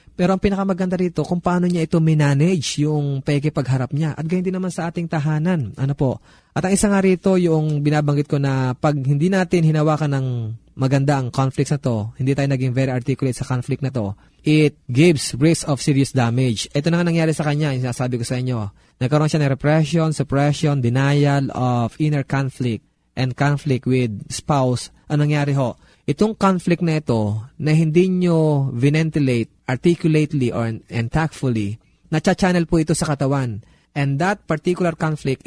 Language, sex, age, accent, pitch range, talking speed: Filipino, male, 20-39, native, 125-155 Hz, 175 wpm